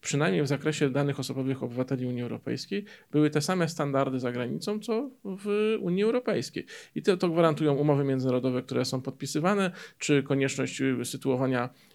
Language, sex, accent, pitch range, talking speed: Polish, male, native, 130-160 Hz, 150 wpm